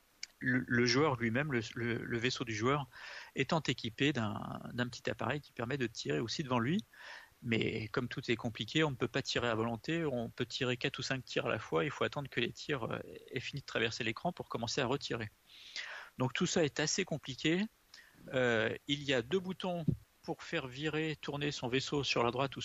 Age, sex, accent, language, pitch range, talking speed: 40-59, male, French, French, 125-160 Hz, 210 wpm